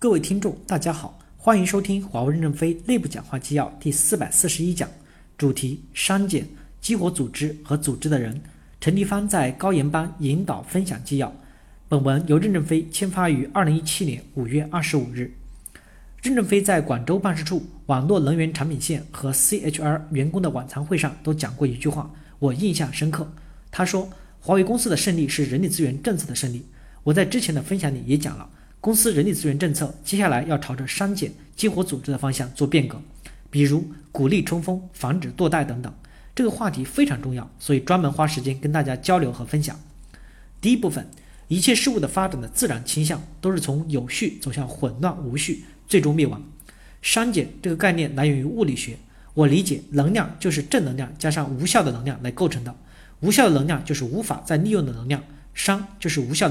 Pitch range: 140-180 Hz